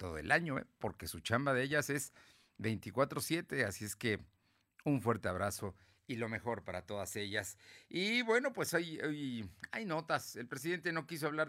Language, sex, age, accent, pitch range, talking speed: Spanish, male, 50-69, Mexican, 100-135 Hz, 185 wpm